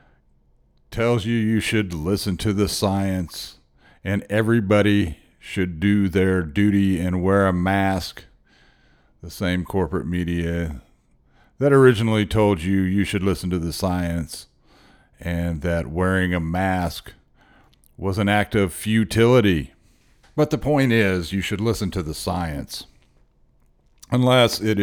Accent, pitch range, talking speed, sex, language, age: American, 85-100 Hz, 130 wpm, male, English, 50-69